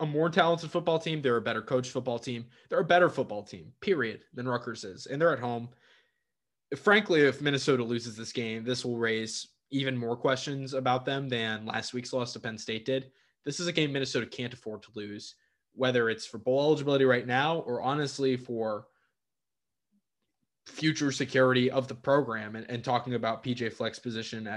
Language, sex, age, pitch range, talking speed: English, male, 20-39, 115-135 Hz, 190 wpm